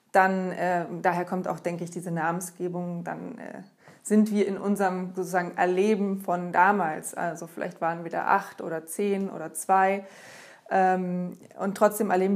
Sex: female